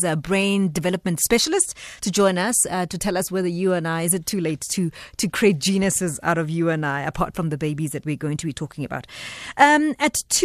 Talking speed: 240 wpm